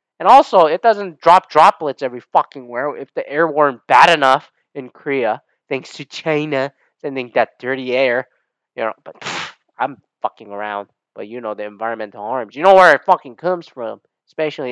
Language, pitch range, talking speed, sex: English, 135-195 Hz, 185 wpm, male